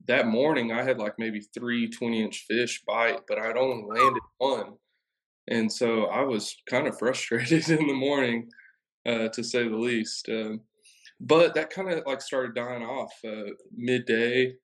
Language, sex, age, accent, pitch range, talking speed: English, male, 20-39, American, 115-130 Hz, 170 wpm